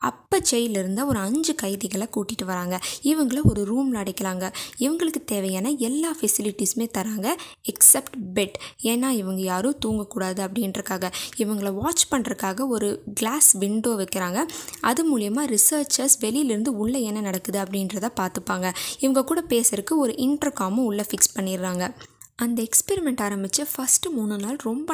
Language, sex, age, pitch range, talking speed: Tamil, female, 20-39, 200-270 Hz, 130 wpm